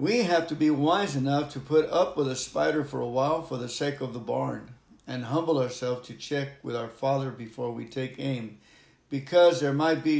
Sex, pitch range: male, 130-160 Hz